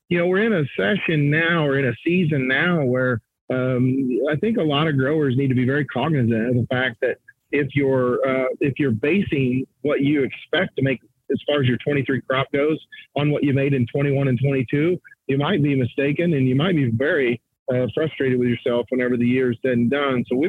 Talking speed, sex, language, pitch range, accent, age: 225 wpm, male, English, 125-150 Hz, American, 40-59